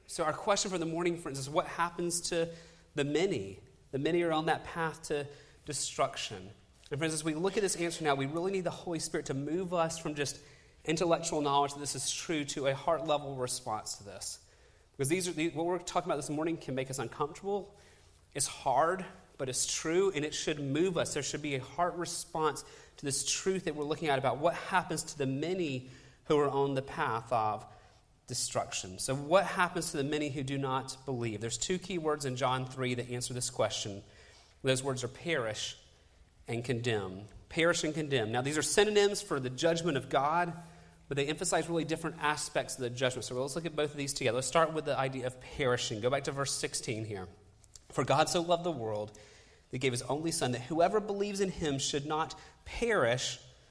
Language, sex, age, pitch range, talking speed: English, male, 30-49, 130-165 Hz, 215 wpm